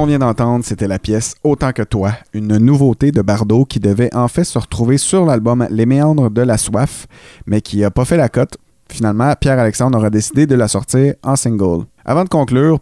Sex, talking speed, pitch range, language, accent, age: male, 205 wpm, 105-135 Hz, French, Canadian, 30-49